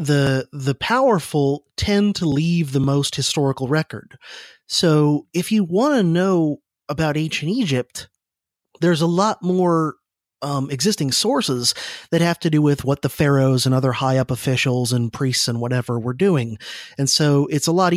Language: English